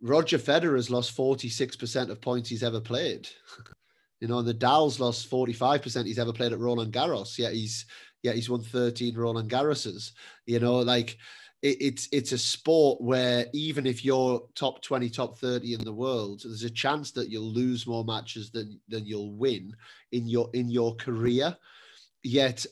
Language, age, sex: English, 30-49, male